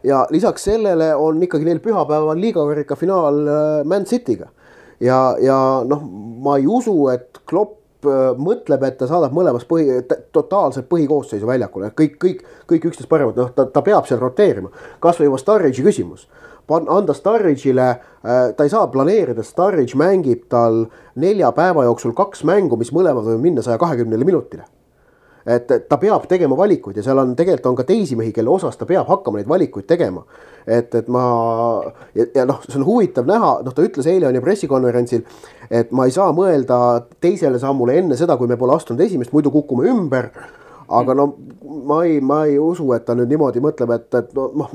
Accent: Finnish